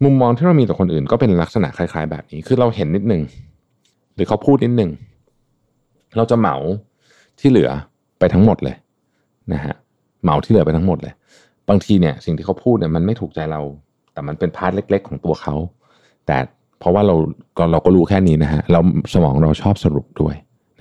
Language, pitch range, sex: Thai, 80-115 Hz, male